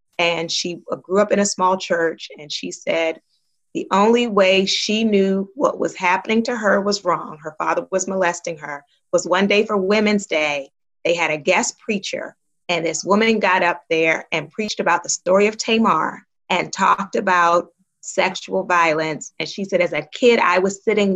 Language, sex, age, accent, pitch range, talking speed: English, female, 30-49, American, 175-230 Hz, 185 wpm